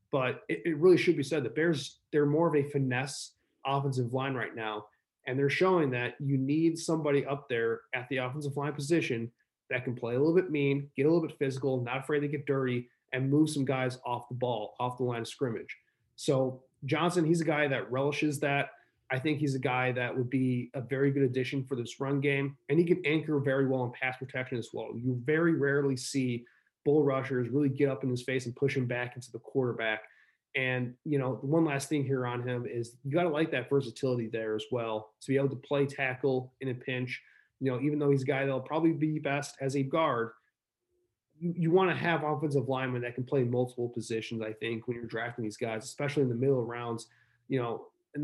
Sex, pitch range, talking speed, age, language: male, 125-145 Hz, 230 wpm, 20-39, English